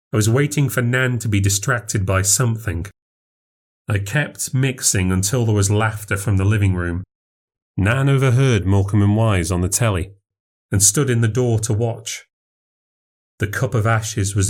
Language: English